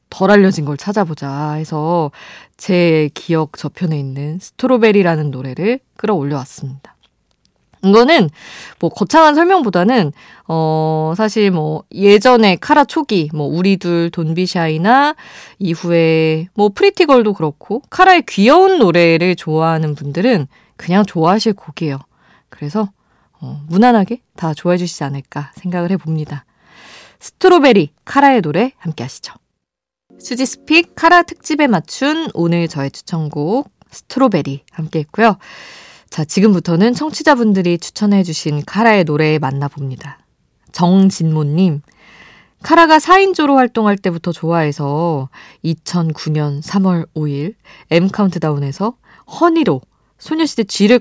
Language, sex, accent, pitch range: Korean, female, native, 155-220 Hz